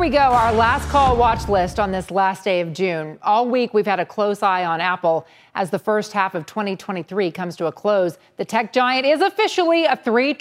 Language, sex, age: English, female, 40-59